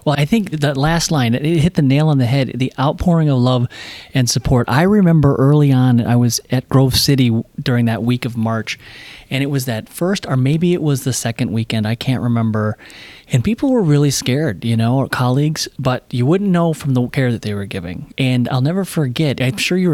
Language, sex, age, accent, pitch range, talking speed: English, male, 30-49, American, 120-150 Hz, 225 wpm